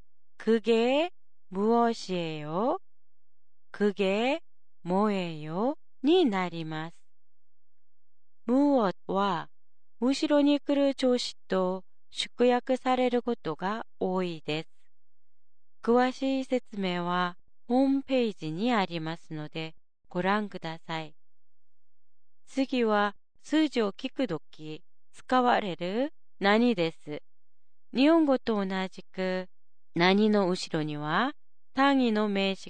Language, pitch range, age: Japanese, 175-250 Hz, 30-49